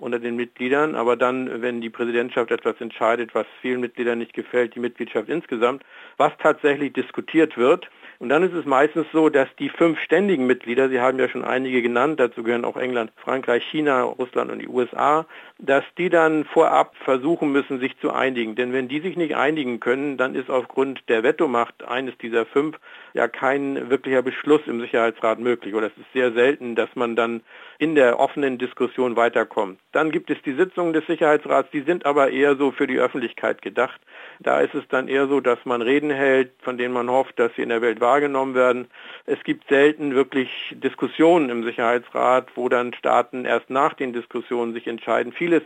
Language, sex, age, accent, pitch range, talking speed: German, male, 50-69, German, 120-145 Hz, 195 wpm